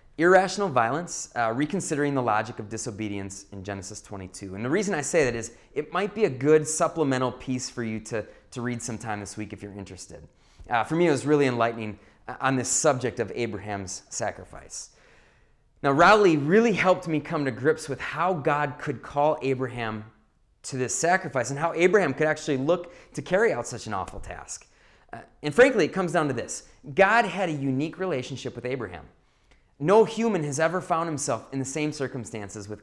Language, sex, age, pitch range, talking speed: English, male, 30-49, 110-160 Hz, 190 wpm